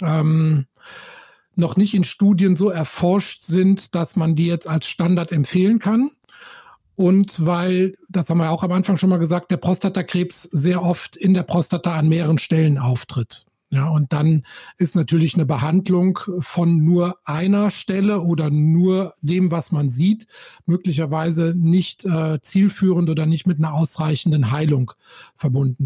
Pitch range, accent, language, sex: 160-185 Hz, German, German, male